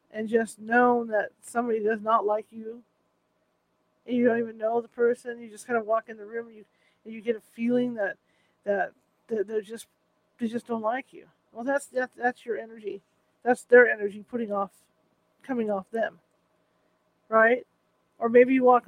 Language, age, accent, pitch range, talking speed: English, 40-59, American, 215-245 Hz, 190 wpm